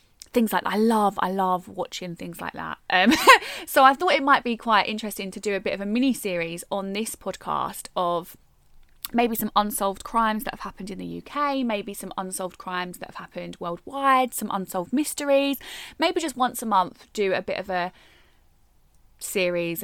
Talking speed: 190 wpm